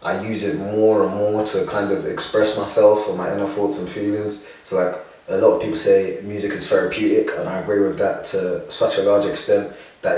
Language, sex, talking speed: English, male, 225 wpm